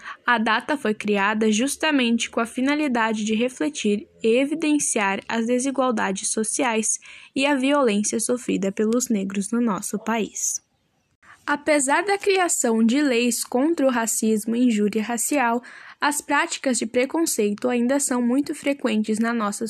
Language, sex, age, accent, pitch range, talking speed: Portuguese, female, 10-29, Brazilian, 225-275 Hz, 135 wpm